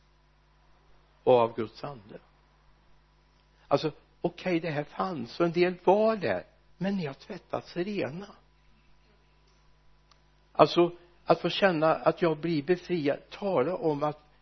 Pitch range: 125-170 Hz